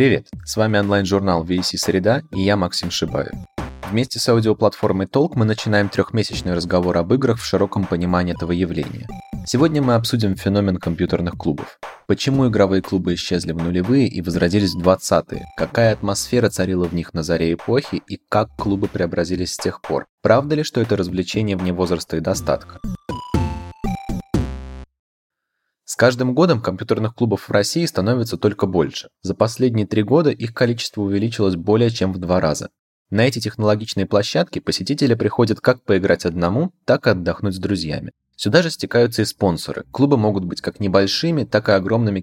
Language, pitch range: Russian, 90-110 Hz